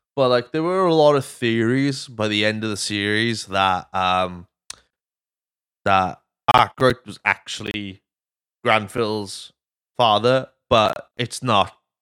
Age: 20-39